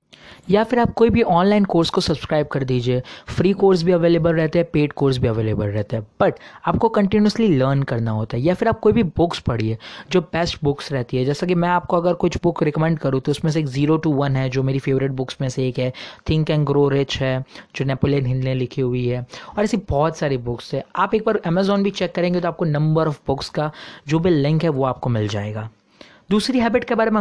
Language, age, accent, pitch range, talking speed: Hindi, 30-49, native, 135-195 Hz, 245 wpm